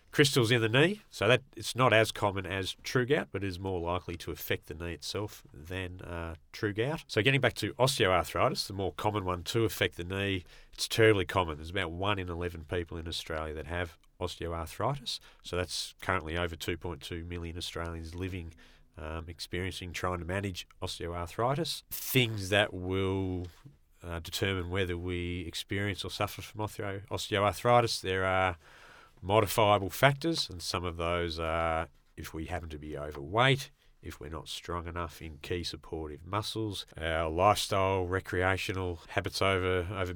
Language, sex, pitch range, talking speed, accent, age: English, male, 85-100 Hz, 165 wpm, Australian, 30-49